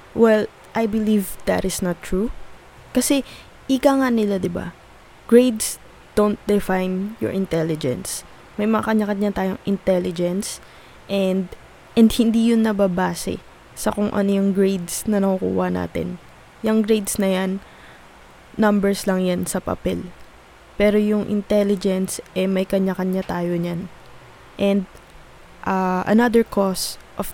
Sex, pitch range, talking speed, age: female, 185-215 Hz, 125 wpm, 20-39